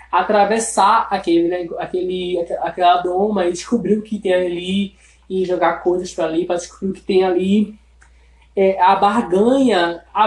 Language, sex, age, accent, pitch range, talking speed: Portuguese, male, 20-39, Brazilian, 190-250 Hz, 160 wpm